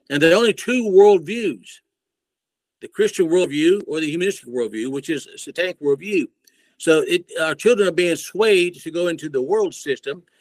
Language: English